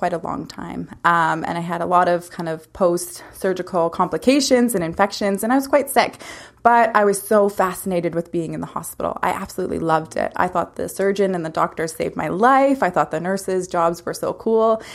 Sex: female